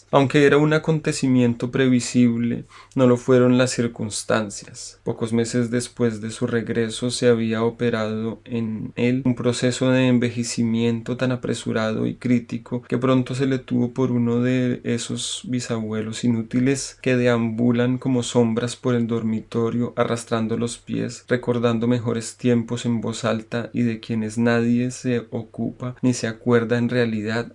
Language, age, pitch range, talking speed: Spanish, 30-49, 110-125 Hz, 145 wpm